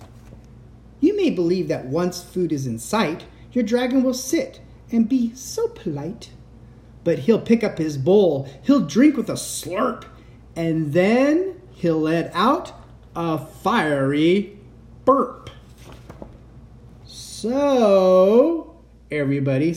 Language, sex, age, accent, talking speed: English, male, 30-49, American, 110 wpm